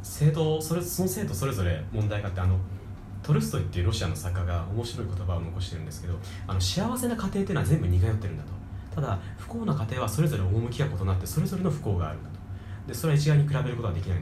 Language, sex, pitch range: Japanese, male, 95-125 Hz